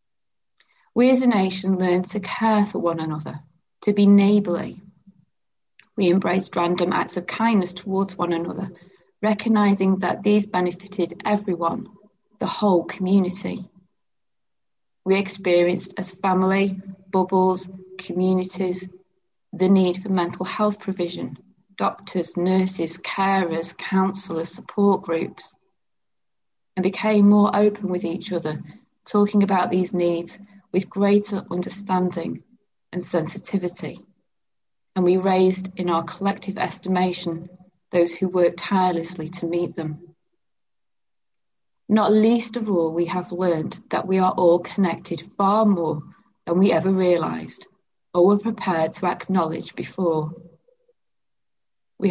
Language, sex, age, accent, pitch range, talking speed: English, female, 30-49, British, 175-200 Hz, 120 wpm